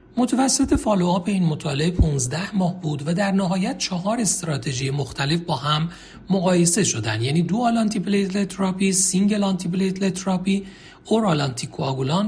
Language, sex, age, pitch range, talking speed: Persian, male, 40-59, 135-200 Hz, 115 wpm